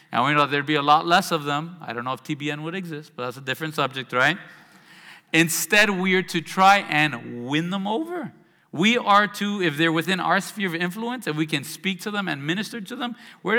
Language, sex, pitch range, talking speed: English, male, 145-195 Hz, 235 wpm